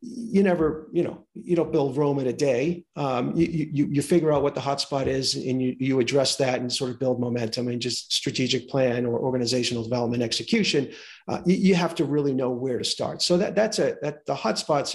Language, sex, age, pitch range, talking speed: English, male, 40-59, 135-170 Hz, 225 wpm